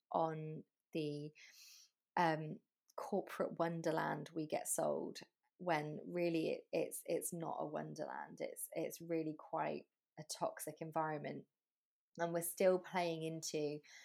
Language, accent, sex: English, British, female